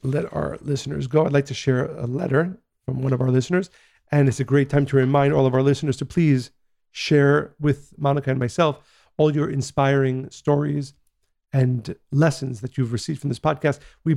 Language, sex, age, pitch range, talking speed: English, male, 40-59, 130-150 Hz, 210 wpm